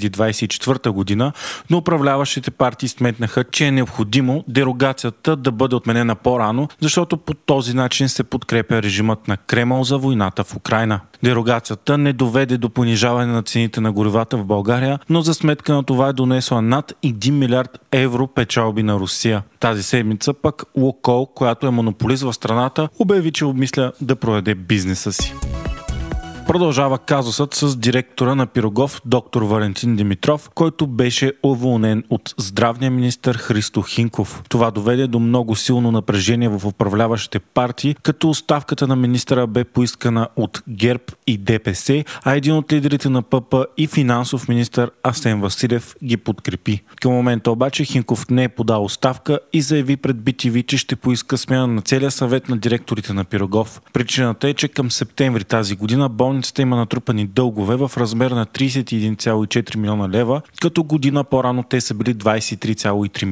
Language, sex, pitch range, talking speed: Bulgarian, male, 115-135 Hz, 155 wpm